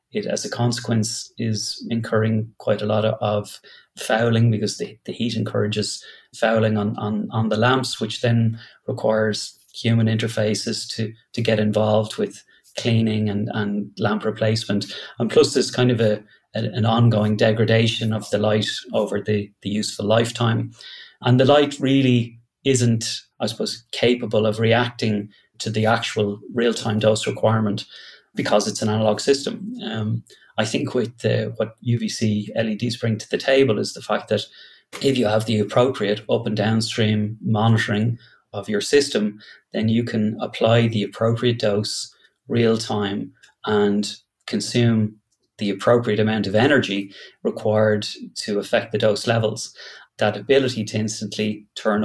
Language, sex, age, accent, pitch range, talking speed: English, male, 30-49, Irish, 105-115 Hz, 150 wpm